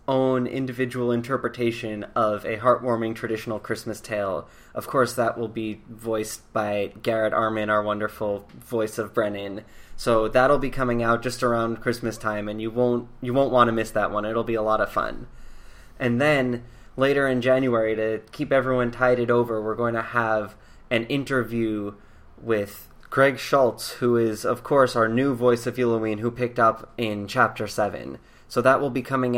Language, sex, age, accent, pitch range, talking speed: English, male, 20-39, American, 110-130 Hz, 180 wpm